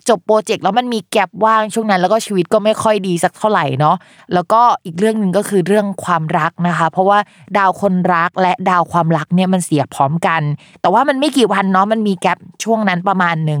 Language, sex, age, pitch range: Thai, female, 20-39, 170-220 Hz